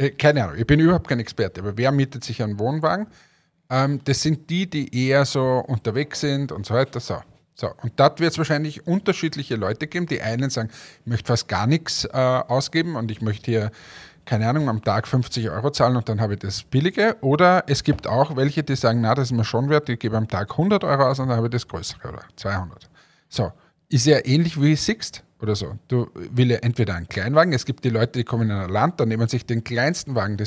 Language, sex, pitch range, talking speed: German, male, 115-150 Hz, 230 wpm